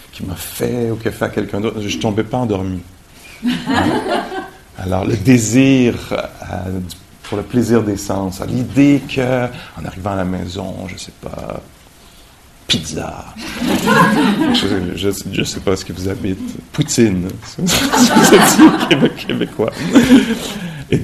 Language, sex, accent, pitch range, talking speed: English, male, French, 95-115 Hz, 135 wpm